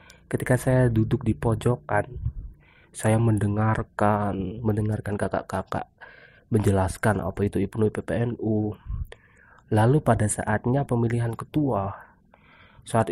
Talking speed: 90 wpm